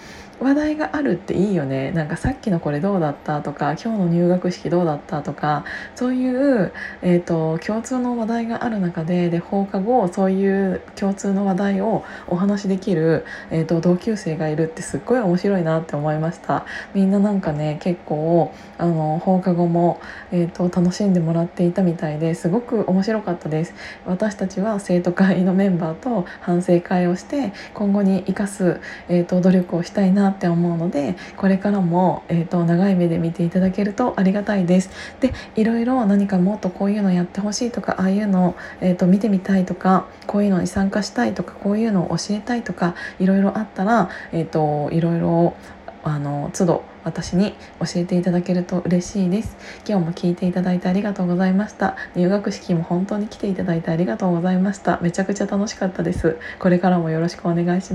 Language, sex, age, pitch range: Japanese, female, 20-39, 170-200 Hz